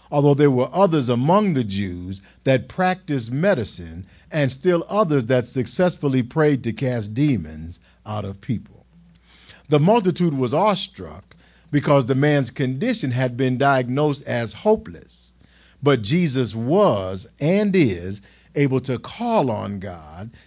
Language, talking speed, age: English, 130 wpm, 50-69